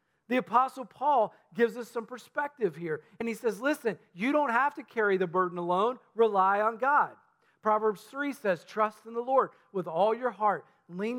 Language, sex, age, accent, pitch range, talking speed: English, male, 40-59, American, 175-225 Hz, 190 wpm